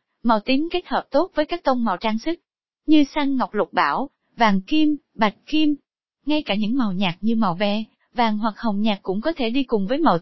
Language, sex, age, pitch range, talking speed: Vietnamese, female, 20-39, 220-290 Hz, 230 wpm